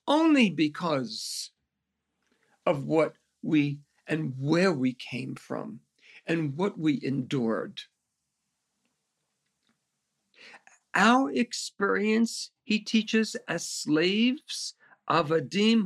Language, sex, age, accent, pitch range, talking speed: English, male, 50-69, American, 155-230 Hz, 80 wpm